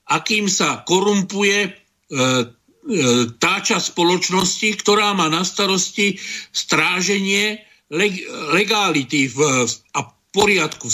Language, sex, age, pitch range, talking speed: Slovak, male, 50-69, 155-190 Hz, 80 wpm